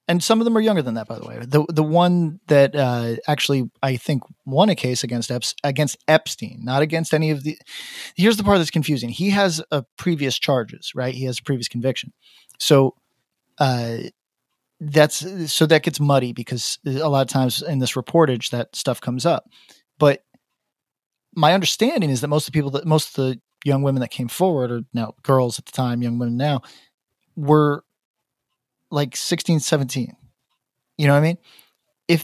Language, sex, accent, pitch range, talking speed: English, male, American, 130-170 Hz, 190 wpm